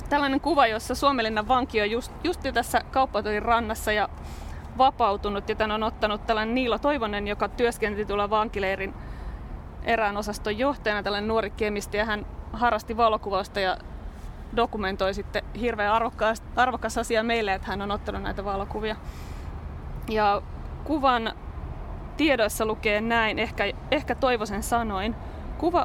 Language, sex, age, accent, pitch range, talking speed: Finnish, female, 20-39, native, 205-235 Hz, 130 wpm